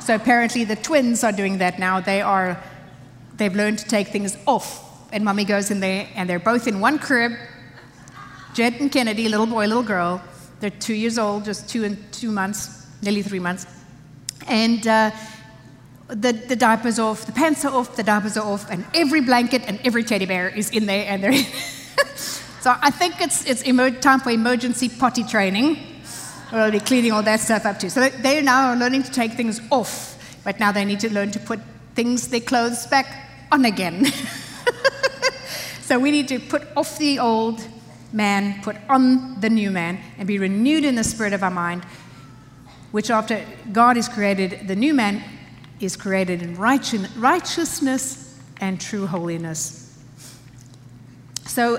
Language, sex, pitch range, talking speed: English, female, 190-250 Hz, 175 wpm